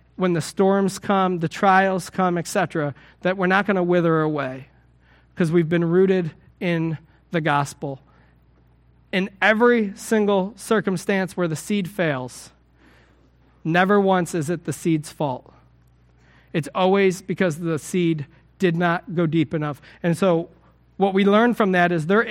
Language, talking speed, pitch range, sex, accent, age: English, 150 wpm, 160-200 Hz, male, American, 40-59